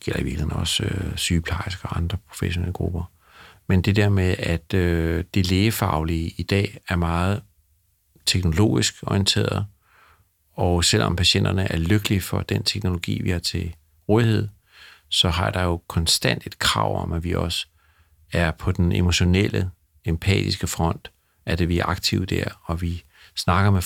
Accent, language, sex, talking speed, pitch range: native, Danish, male, 155 wpm, 85-100 Hz